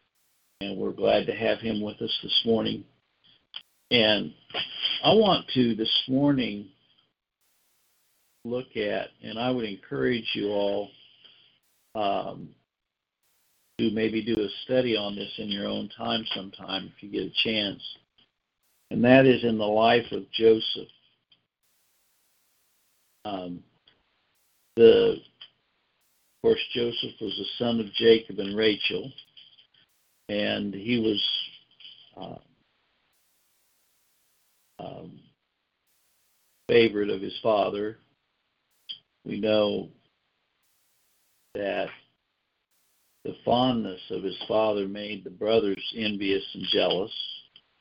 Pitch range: 100-115 Hz